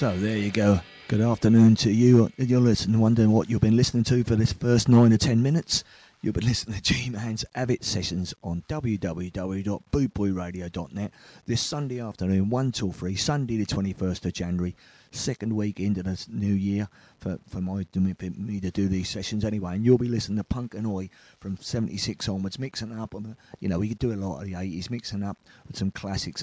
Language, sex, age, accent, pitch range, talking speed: English, male, 30-49, British, 95-120 Hz, 195 wpm